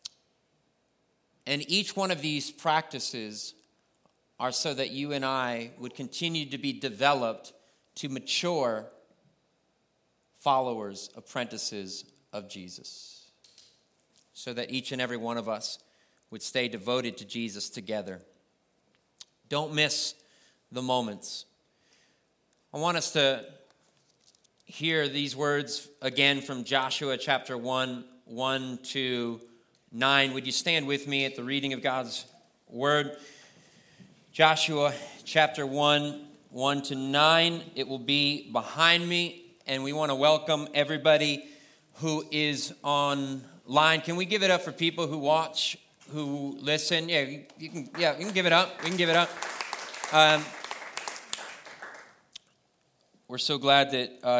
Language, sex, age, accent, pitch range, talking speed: English, male, 30-49, American, 125-155 Hz, 130 wpm